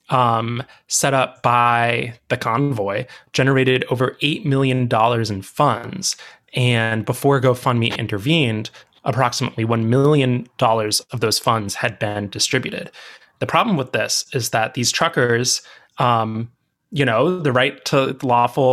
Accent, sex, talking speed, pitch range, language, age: American, male, 130 wpm, 115-135 Hz, English, 20-39